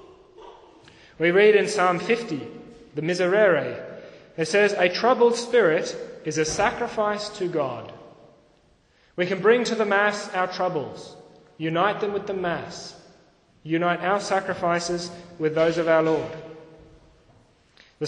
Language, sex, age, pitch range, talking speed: English, male, 30-49, 155-205 Hz, 130 wpm